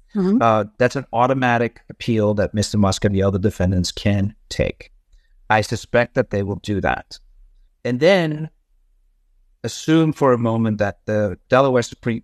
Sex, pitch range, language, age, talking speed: male, 105-145 Hz, English, 50-69, 150 wpm